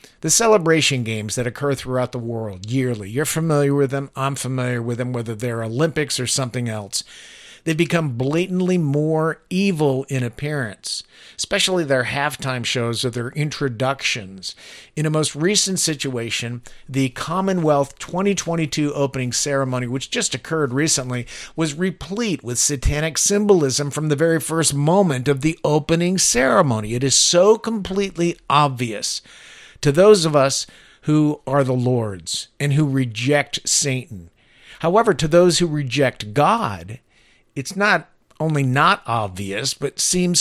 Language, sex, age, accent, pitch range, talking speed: English, male, 50-69, American, 125-170 Hz, 140 wpm